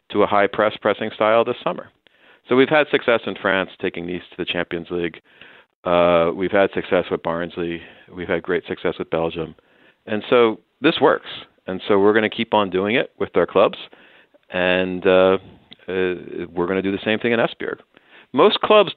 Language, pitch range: Danish, 90-115 Hz